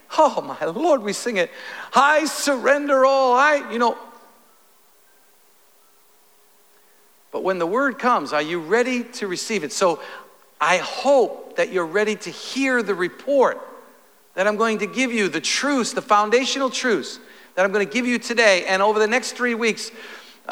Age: 50-69